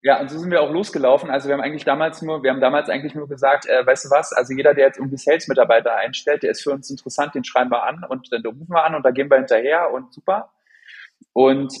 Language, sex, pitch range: German, male, 135-165 Hz